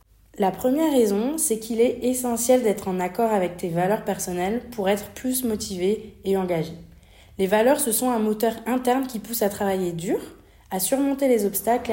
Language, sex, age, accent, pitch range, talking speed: French, female, 30-49, French, 190-240 Hz, 180 wpm